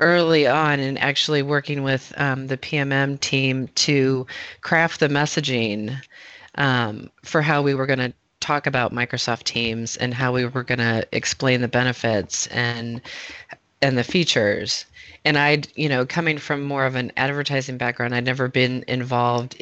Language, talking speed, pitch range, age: English, 160 wpm, 125-140 Hz, 30-49